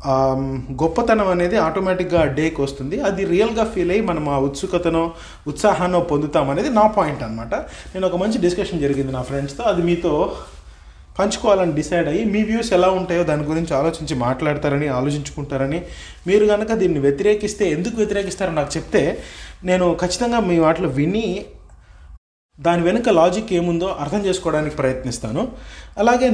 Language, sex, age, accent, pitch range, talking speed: Telugu, male, 30-49, native, 135-180 Hz, 135 wpm